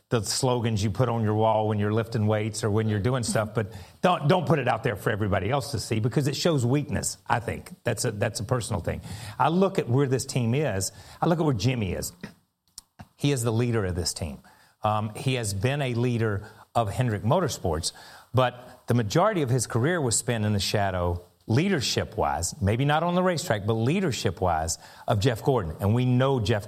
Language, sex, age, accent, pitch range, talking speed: English, male, 40-59, American, 100-130 Hz, 220 wpm